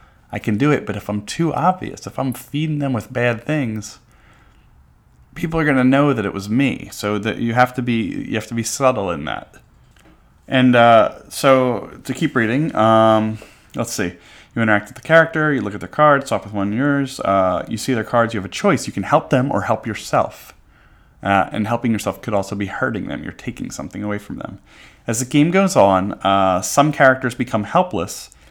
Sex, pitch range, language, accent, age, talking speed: male, 100-130 Hz, English, American, 30-49, 215 wpm